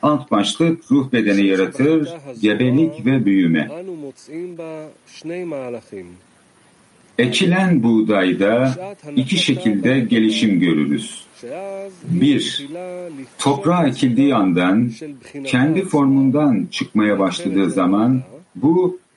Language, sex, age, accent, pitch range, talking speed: English, male, 60-79, Turkish, 105-165 Hz, 75 wpm